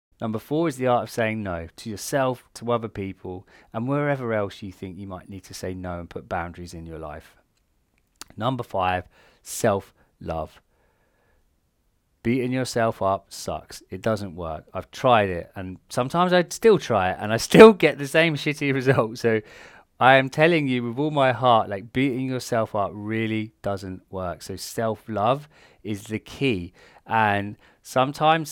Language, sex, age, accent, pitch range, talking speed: English, male, 30-49, British, 95-130 Hz, 170 wpm